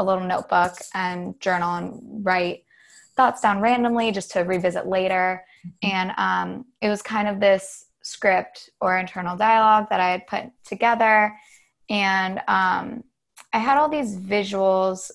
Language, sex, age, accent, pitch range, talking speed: English, female, 20-39, American, 180-210 Hz, 145 wpm